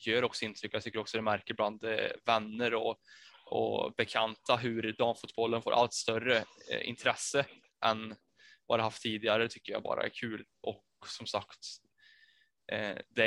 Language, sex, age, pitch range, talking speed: Swedish, male, 10-29, 110-125 Hz, 155 wpm